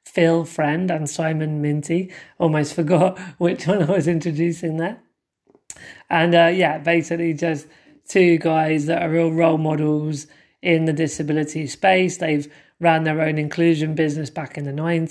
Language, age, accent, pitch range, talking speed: English, 20-39, British, 155-170 Hz, 150 wpm